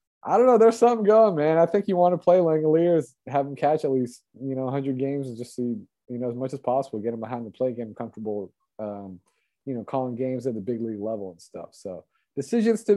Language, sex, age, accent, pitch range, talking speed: English, male, 30-49, American, 125-165 Hz, 255 wpm